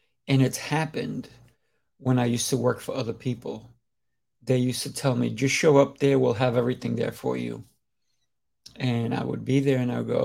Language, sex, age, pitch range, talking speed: English, male, 50-69, 120-140 Hz, 200 wpm